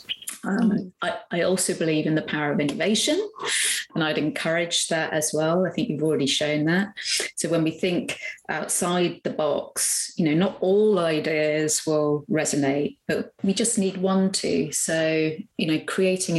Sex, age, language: female, 30-49, English